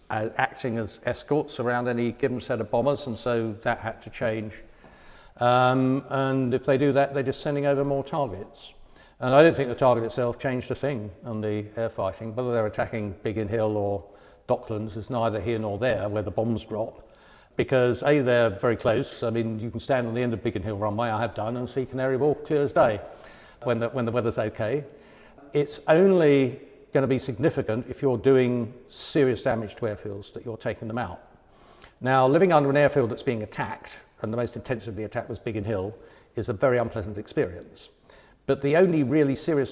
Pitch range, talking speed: 110-140 Hz, 200 wpm